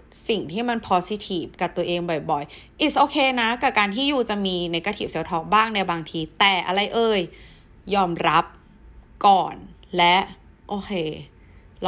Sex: female